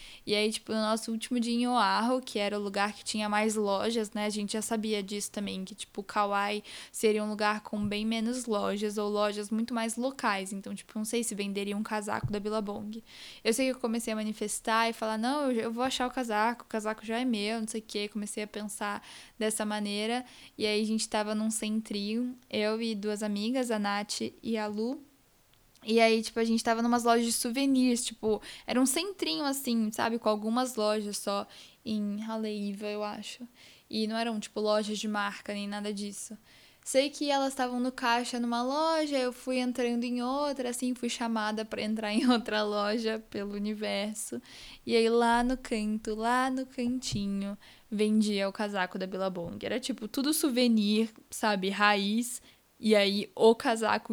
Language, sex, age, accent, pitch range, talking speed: Portuguese, female, 10-29, Brazilian, 210-240 Hz, 195 wpm